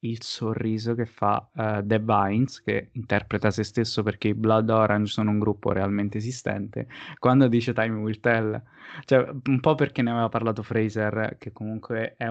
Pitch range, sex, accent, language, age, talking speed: 110-130 Hz, male, native, Italian, 20-39, 175 wpm